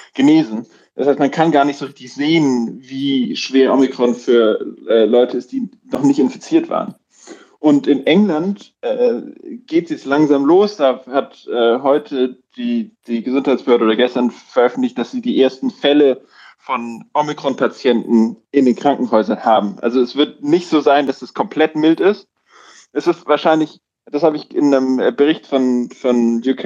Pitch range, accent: 125-210 Hz, German